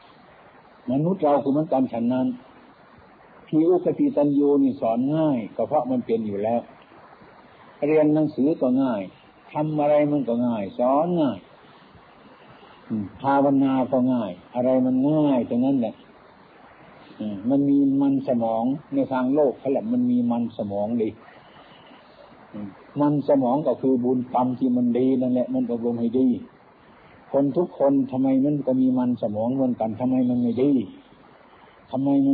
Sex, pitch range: male, 125-170 Hz